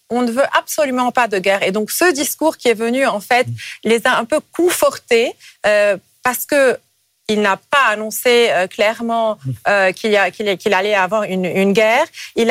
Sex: female